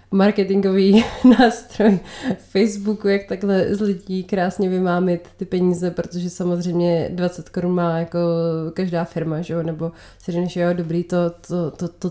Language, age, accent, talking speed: Czech, 20-39, native, 145 wpm